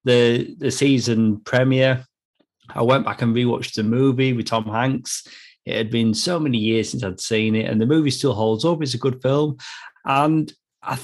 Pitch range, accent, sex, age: 110-145 Hz, British, male, 30-49